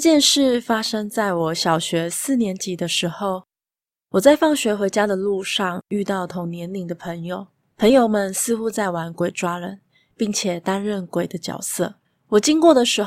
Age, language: 20-39, Chinese